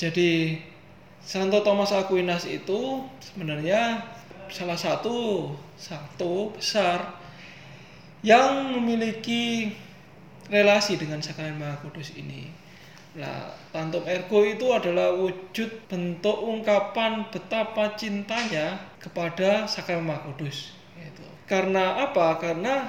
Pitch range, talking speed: 170-210 Hz, 90 wpm